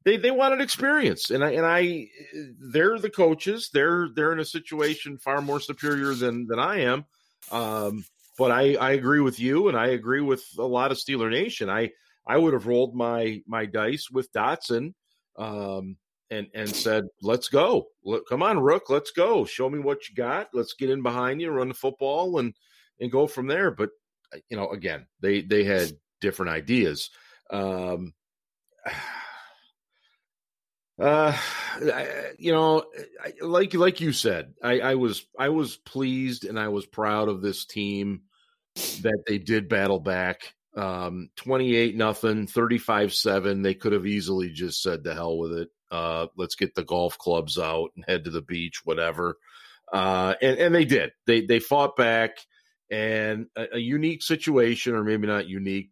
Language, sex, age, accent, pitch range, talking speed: English, male, 50-69, American, 100-145 Hz, 175 wpm